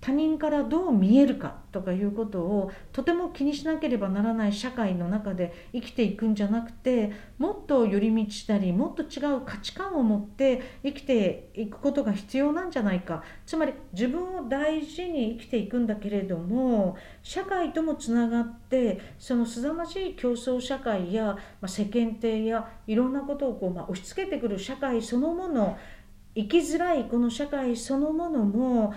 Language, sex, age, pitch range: Japanese, female, 50-69, 215-285 Hz